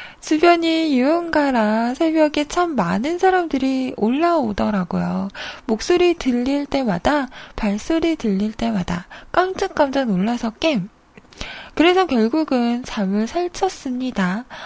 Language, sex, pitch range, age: Korean, female, 225-330 Hz, 20-39